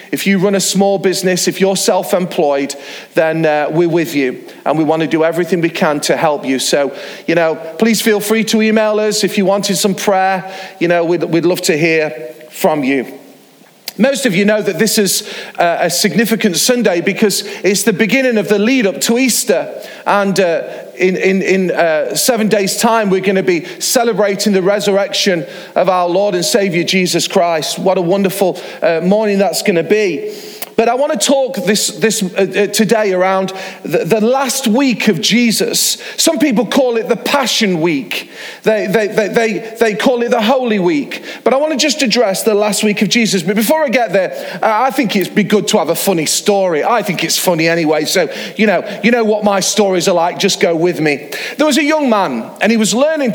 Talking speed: 210 wpm